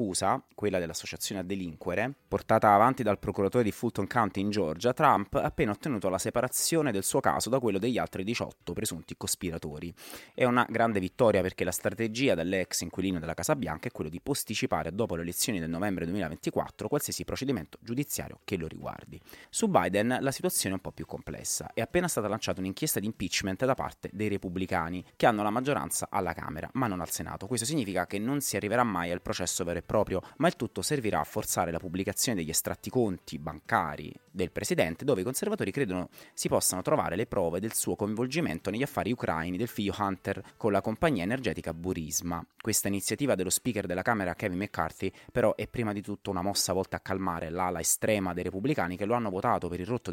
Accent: native